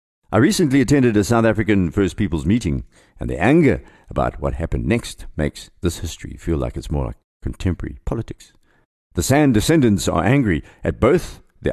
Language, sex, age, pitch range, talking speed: English, male, 60-79, 75-110 Hz, 175 wpm